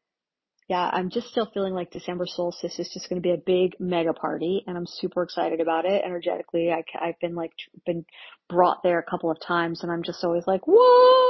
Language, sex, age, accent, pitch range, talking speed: English, female, 40-59, American, 180-210 Hz, 220 wpm